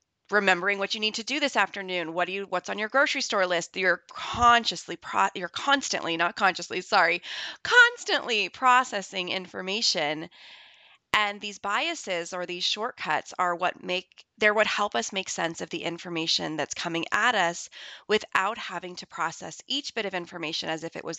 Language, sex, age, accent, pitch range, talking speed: English, female, 20-39, American, 175-230 Hz, 175 wpm